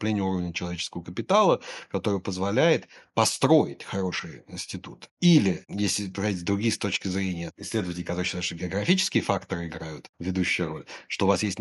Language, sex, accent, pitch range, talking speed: Russian, male, native, 95-115 Hz, 140 wpm